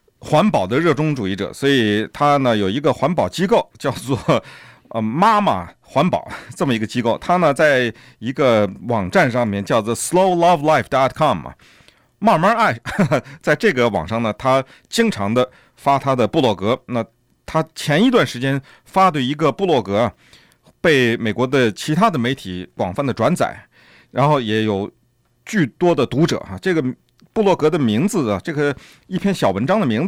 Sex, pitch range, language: male, 115-175 Hz, Chinese